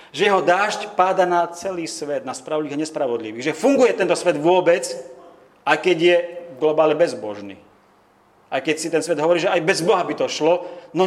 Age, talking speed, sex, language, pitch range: 40-59, 190 wpm, male, Slovak, 155-210 Hz